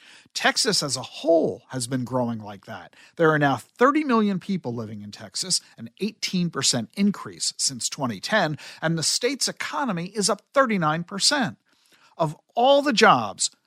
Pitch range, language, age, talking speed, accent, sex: 150-225 Hz, English, 50-69, 150 wpm, American, male